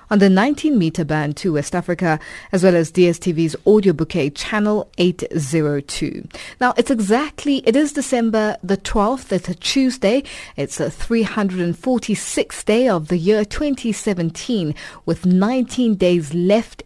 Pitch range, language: 170-220 Hz, English